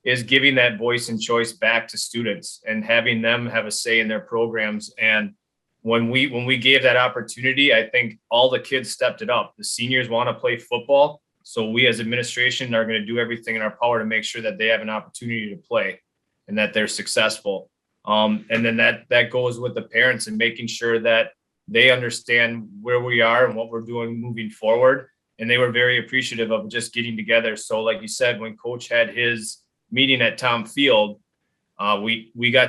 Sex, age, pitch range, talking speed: male, 20-39, 110-125 Hz, 210 wpm